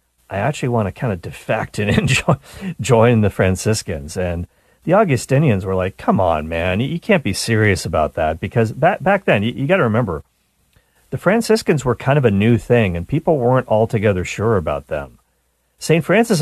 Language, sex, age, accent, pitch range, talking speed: English, male, 40-59, American, 100-150 Hz, 185 wpm